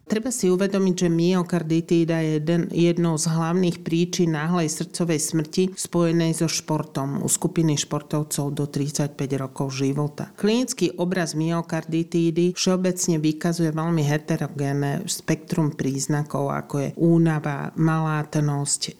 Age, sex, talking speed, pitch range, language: 40-59, male, 120 wpm, 150-170 Hz, Slovak